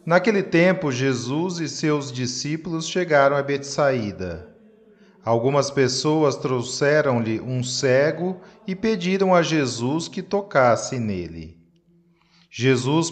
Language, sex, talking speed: Portuguese, male, 100 wpm